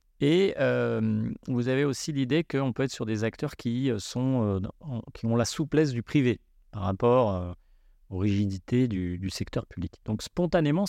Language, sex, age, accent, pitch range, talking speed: French, male, 40-59, French, 105-140 Hz, 165 wpm